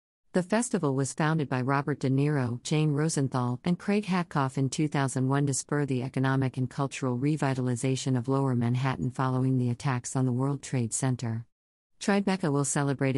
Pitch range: 125-160 Hz